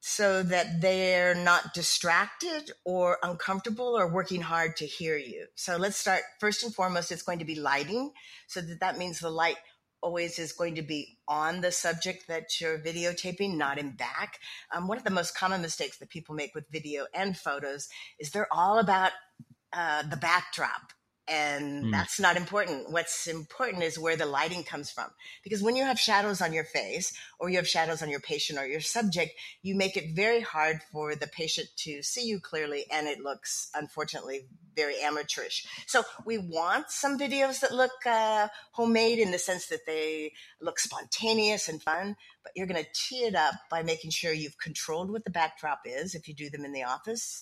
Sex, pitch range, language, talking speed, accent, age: female, 155-200 Hz, English, 195 wpm, American, 50-69